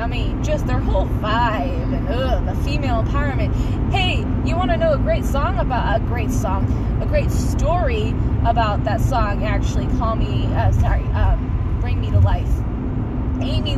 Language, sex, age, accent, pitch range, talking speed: English, female, 20-39, American, 90-115 Hz, 170 wpm